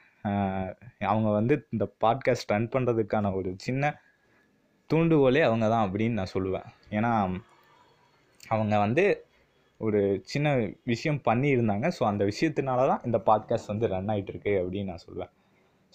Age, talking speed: 20-39, 125 wpm